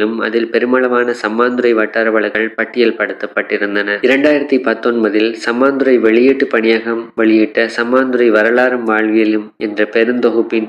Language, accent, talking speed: Tamil, native, 85 wpm